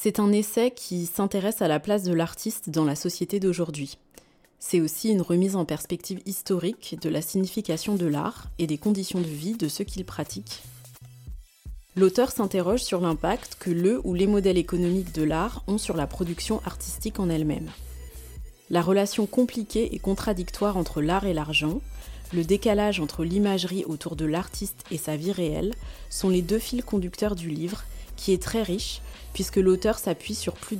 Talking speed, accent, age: 175 wpm, French, 20-39